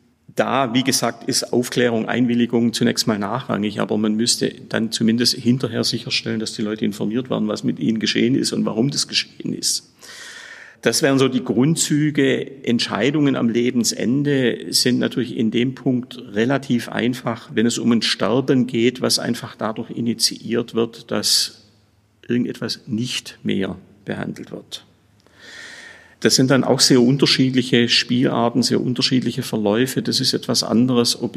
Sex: male